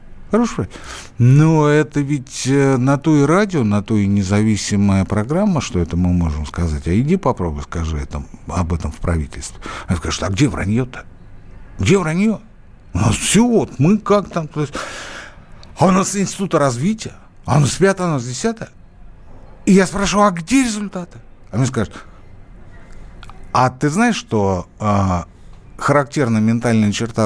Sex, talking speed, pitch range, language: male, 155 wpm, 95-145 Hz, Russian